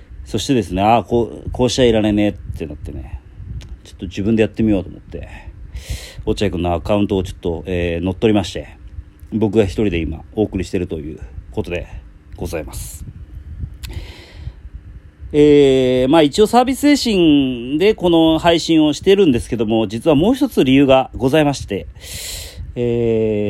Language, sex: Japanese, male